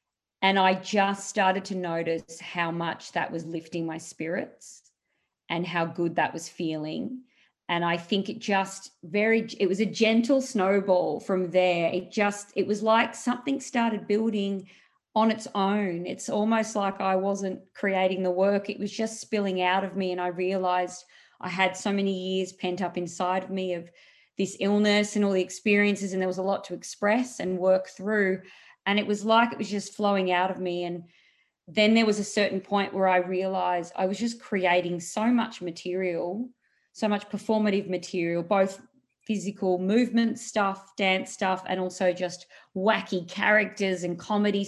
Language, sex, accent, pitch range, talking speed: English, female, Australian, 180-210 Hz, 180 wpm